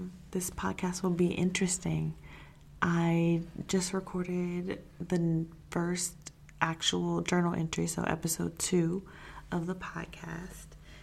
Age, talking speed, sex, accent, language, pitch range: 20-39, 105 wpm, female, American, English, 165-185 Hz